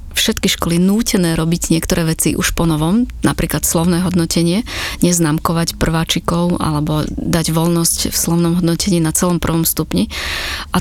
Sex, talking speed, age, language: female, 135 wpm, 30-49, Slovak